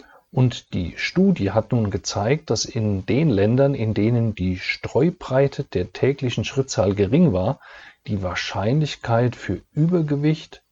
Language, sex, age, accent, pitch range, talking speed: German, male, 40-59, German, 100-135 Hz, 130 wpm